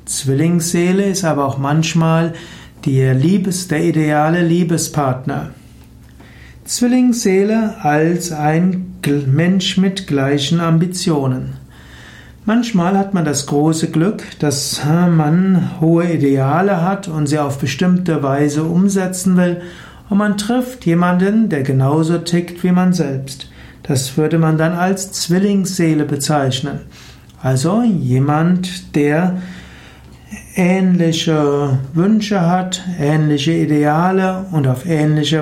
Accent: German